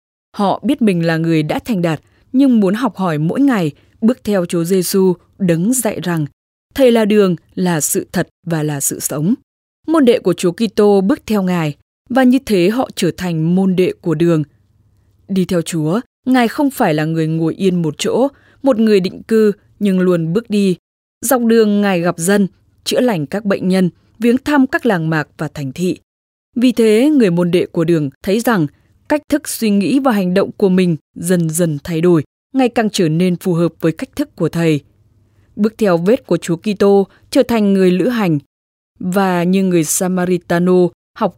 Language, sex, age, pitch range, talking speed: English, female, 10-29, 165-220 Hz, 195 wpm